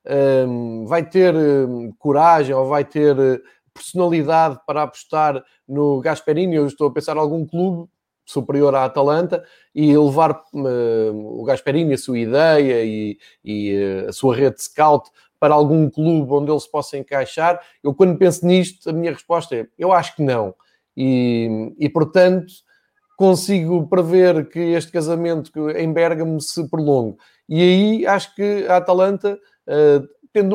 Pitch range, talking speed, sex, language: 140-175 Hz, 145 wpm, male, Portuguese